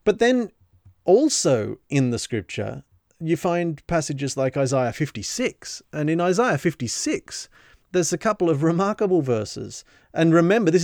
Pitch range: 125-175 Hz